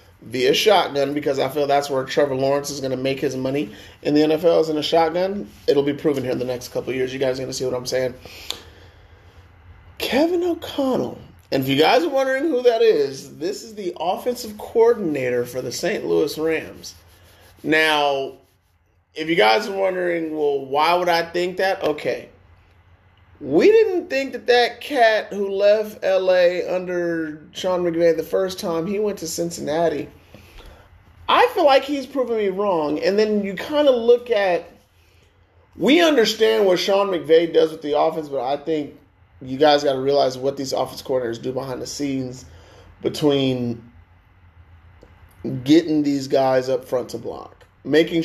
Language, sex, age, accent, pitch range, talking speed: English, male, 30-49, American, 125-185 Hz, 175 wpm